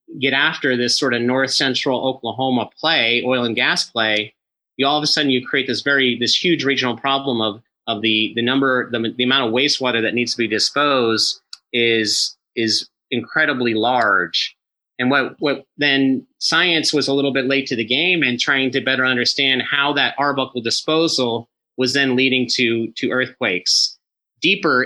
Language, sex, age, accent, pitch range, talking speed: English, male, 30-49, American, 120-140 Hz, 180 wpm